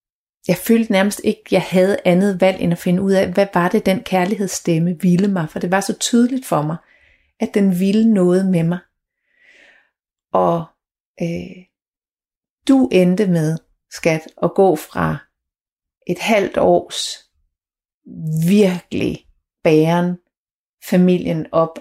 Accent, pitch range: native, 165-200 Hz